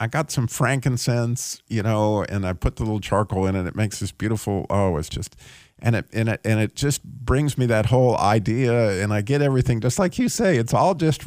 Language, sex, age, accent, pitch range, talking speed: English, male, 50-69, American, 95-125 Hz, 235 wpm